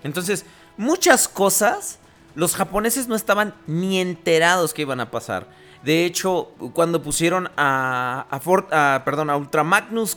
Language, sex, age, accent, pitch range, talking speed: Spanish, male, 30-49, Mexican, 115-160 Hz, 150 wpm